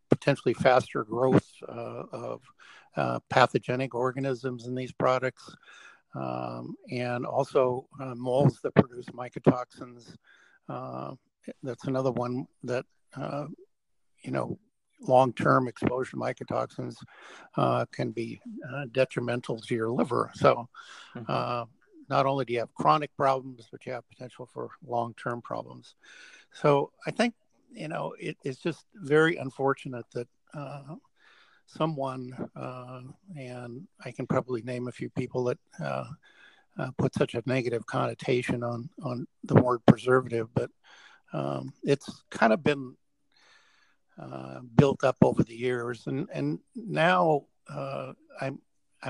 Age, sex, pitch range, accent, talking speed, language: 60-79, male, 120-135 Hz, American, 130 wpm, English